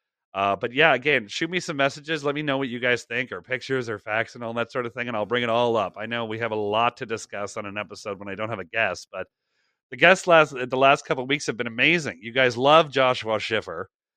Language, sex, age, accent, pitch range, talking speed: English, male, 30-49, American, 110-135 Hz, 275 wpm